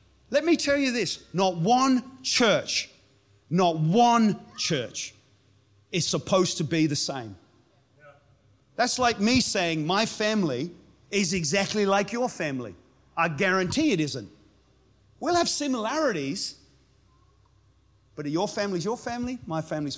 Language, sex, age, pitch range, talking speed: English, male, 40-59, 150-230 Hz, 125 wpm